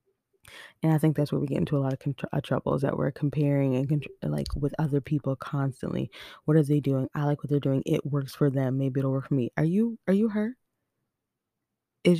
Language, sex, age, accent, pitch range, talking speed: English, female, 20-39, American, 135-160 Hz, 235 wpm